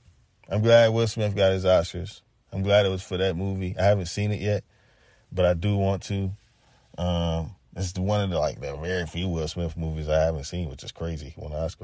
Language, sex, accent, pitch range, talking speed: English, male, American, 95-130 Hz, 235 wpm